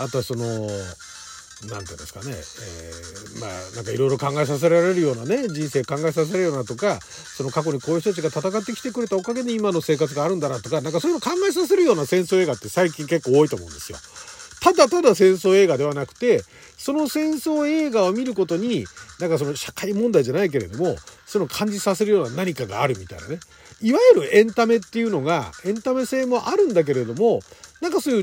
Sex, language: male, Japanese